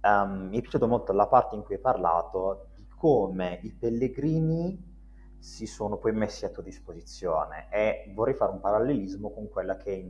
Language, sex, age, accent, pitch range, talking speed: Italian, male, 30-49, native, 95-125 Hz, 185 wpm